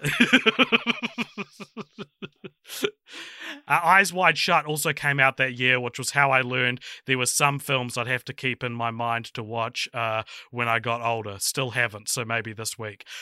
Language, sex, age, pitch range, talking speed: English, male, 30-49, 115-140 Hz, 170 wpm